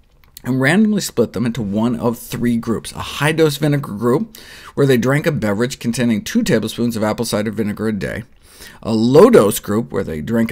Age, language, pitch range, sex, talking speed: 50-69, English, 105-140 Hz, male, 190 wpm